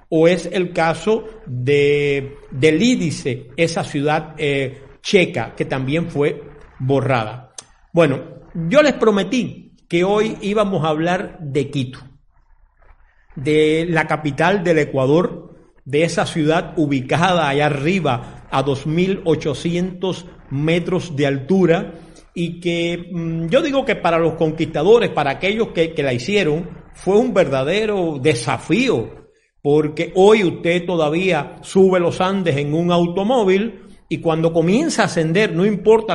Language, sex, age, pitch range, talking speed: Spanish, male, 50-69, 150-190 Hz, 130 wpm